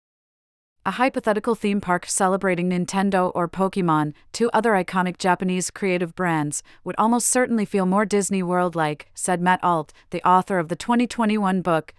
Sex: female